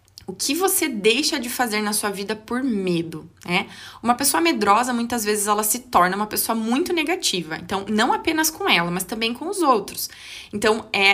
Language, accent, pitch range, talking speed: Portuguese, Brazilian, 190-240 Hz, 195 wpm